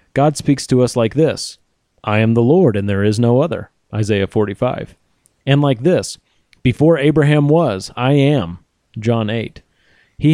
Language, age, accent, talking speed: English, 30-49, American, 165 wpm